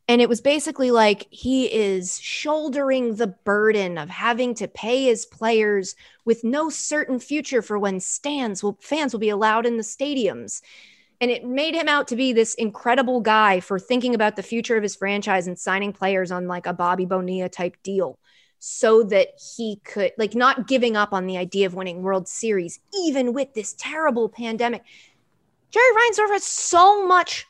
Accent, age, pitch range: American, 30-49, 200-265 Hz